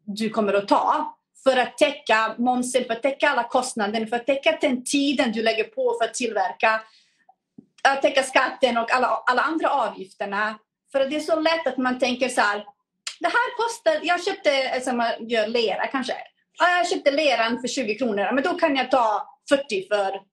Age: 30-49